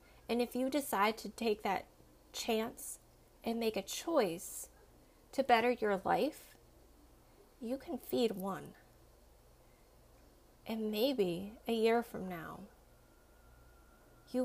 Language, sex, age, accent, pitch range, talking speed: English, female, 20-39, American, 190-245 Hz, 110 wpm